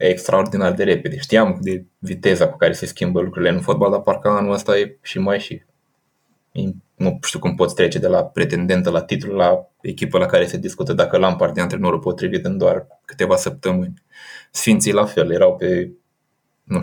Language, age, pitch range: Romanian, 20-39, 105-140 Hz